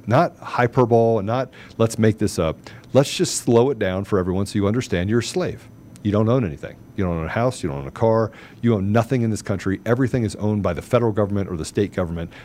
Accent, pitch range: American, 95-115 Hz